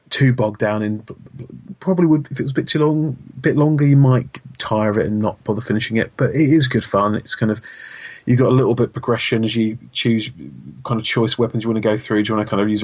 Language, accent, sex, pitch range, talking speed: English, British, male, 105-130 Hz, 280 wpm